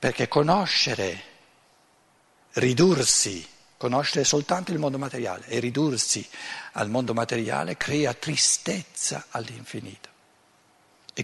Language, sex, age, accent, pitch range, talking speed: Italian, male, 60-79, native, 125-180 Hz, 90 wpm